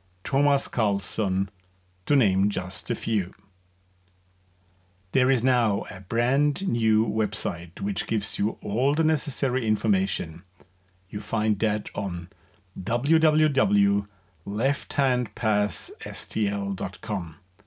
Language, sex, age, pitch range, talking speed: English, male, 50-69, 90-120 Hz, 90 wpm